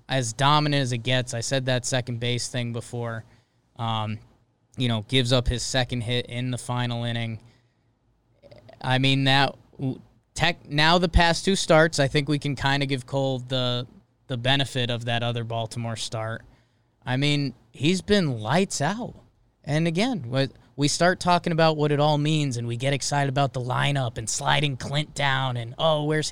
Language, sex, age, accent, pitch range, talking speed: English, male, 20-39, American, 120-150 Hz, 180 wpm